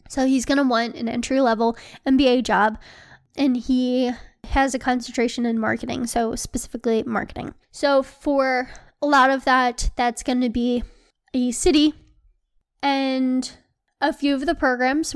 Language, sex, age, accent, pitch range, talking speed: English, female, 10-29, American, 235-275 Hz, 145 wpm